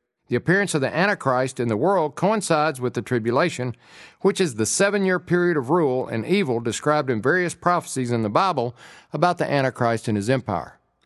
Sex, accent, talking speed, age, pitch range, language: male, American, 185 wpm, 50-69, 120-165 Hz, English